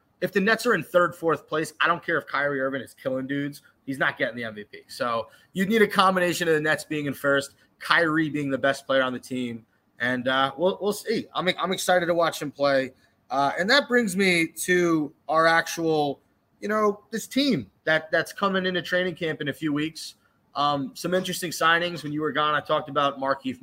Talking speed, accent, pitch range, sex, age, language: 220 wpm, American, 130-160 Hz, male, 20-39, English